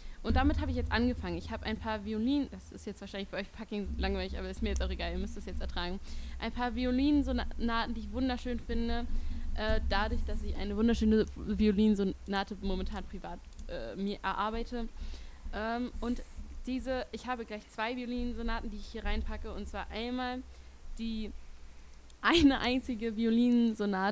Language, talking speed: German, 170 wpm